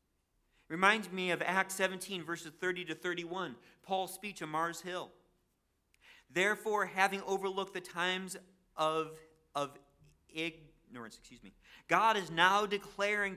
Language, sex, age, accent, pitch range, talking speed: English, male, 40-59, American, 170-205 Hz, 125 wpm